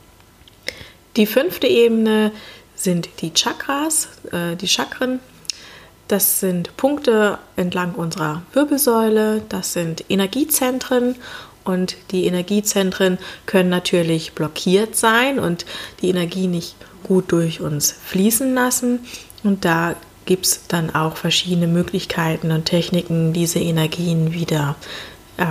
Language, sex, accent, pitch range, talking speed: German, female, German, 165-200 Hz, 115 wpm